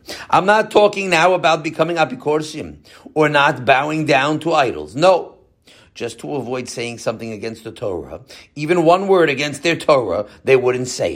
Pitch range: 125-185 Hz